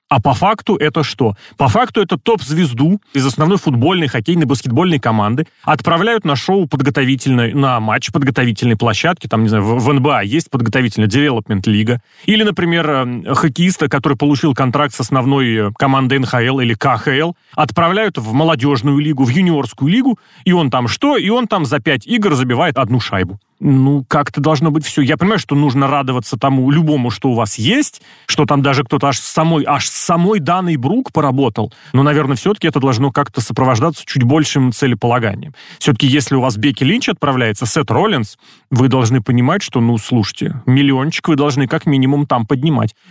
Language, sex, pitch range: Russian, male, 125-155 Hz